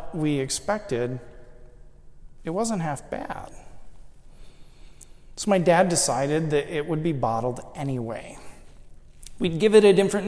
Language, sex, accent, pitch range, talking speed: English, male, American, 120-195 Hz, 125 wpm